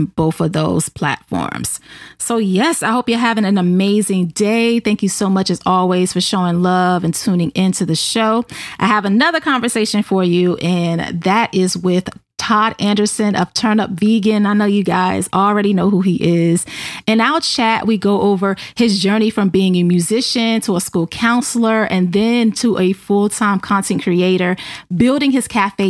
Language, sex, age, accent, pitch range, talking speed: English, female, 30-49, American, 185-235 Hz, 180 wpm